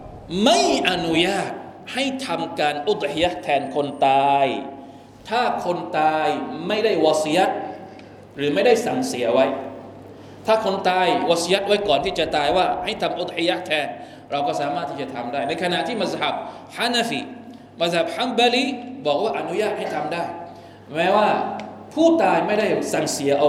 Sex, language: male, Thai